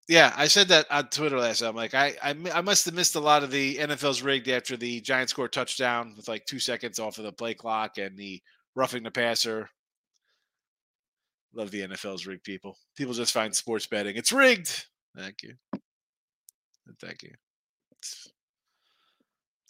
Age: 30-49